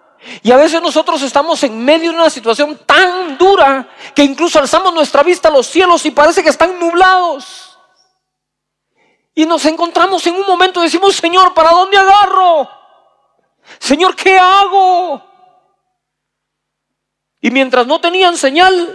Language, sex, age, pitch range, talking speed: Spanish, male, 40-59, 235-345 Hz, 145 wpm